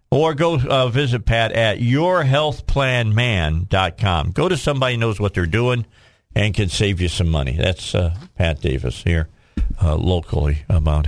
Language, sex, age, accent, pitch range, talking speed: English, male, 50-69, American, 95-125 Hz, 155 wpm